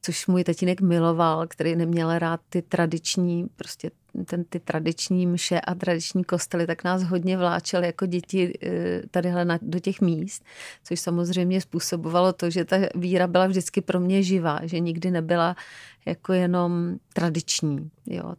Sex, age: female, 40-59